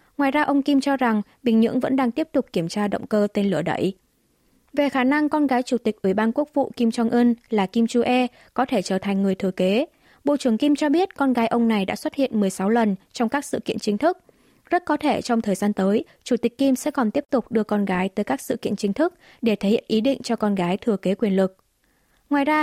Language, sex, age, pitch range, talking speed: Vietnamese, female, 20-39, 200-255 Hz, 265 wpm